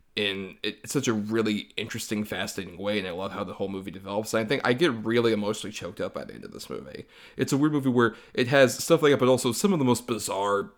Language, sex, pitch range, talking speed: English, male, 110-125 Hz, 265 wpm